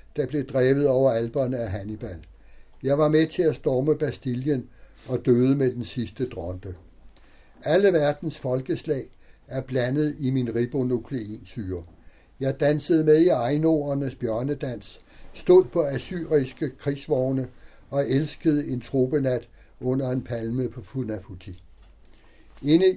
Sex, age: male, 60-79